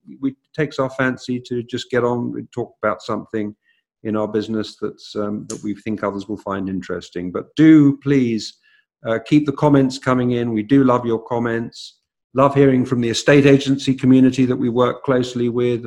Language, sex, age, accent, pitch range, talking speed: English, male, 50-69, British, 100-125 Hz, 190 wpm